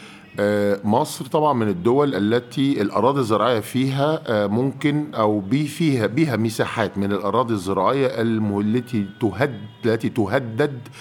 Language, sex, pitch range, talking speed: Arabic, male, 95-135 Hz, 100 wpm